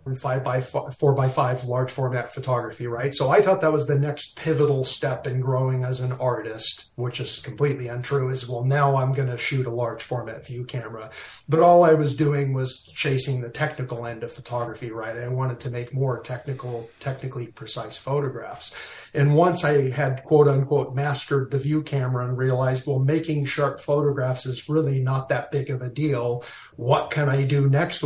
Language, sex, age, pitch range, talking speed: English, male, 40-59, 130-145 Hz, 190 wpm